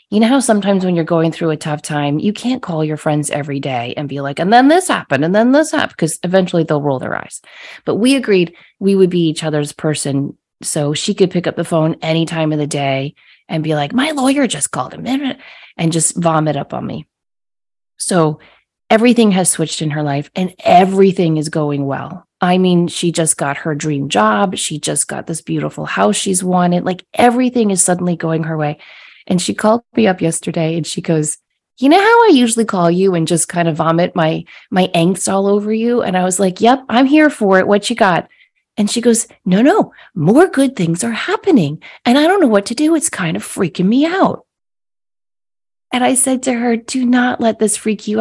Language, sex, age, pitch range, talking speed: English, female, 20-39, 160-235 Hz, 225 wpm